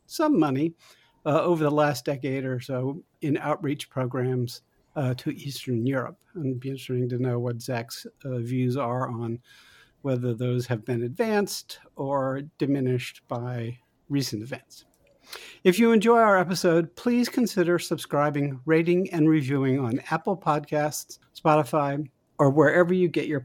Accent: American